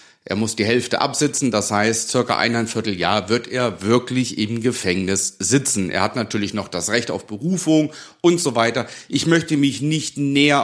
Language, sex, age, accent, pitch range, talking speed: German, male, 40-59, German, 110-140 Hz, 180 wpm